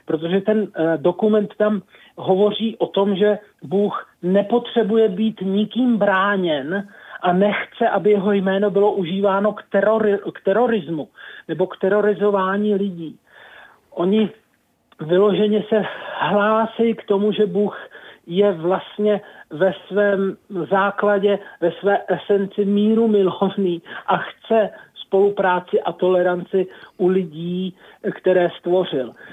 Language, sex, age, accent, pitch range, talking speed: Czech, male, 40-59, native, 185-215 Hz, 110 wpm